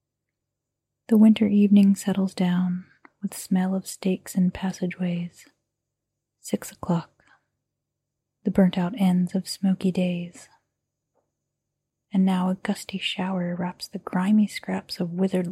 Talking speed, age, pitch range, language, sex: 115 wpm, 30-49, 175-195 Hz, English, female